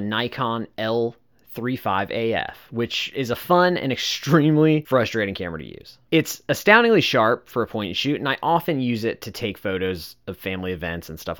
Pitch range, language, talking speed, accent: 110-160 Hz, English, 175 wpm, American